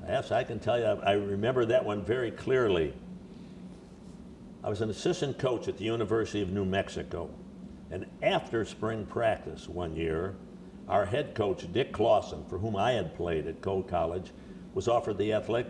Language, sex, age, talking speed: English, male, 60-79, 170 wpm